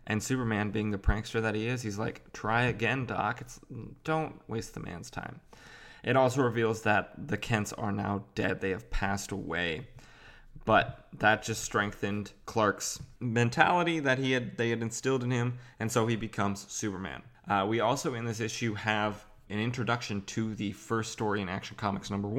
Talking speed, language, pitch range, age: 180 wpm, English, 100-120 Hz, 20-39